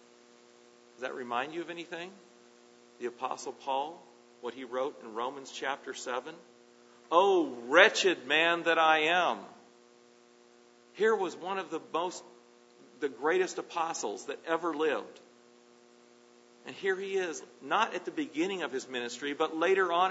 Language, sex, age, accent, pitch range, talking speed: English, male, 50-69, American, 120-185 Hz, 145 wpm